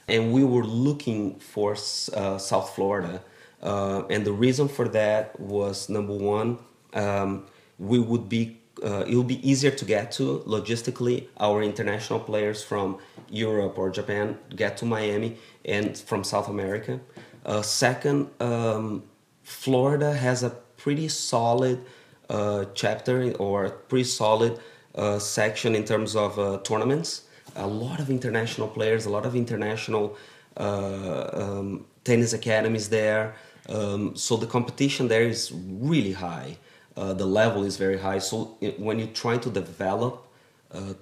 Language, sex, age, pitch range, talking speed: English, male, 30-49, 100-120 Hz, 150 wpm